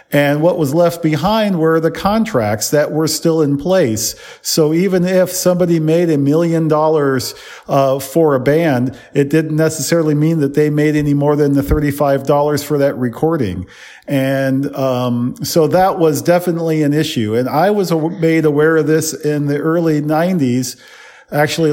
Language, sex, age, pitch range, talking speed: English, male, 40-59, 140-170 Hz, 165 wpm